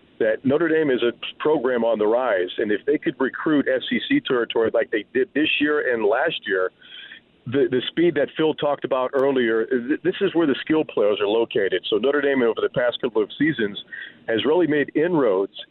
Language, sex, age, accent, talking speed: English, male, 50-69, American, 200 wpm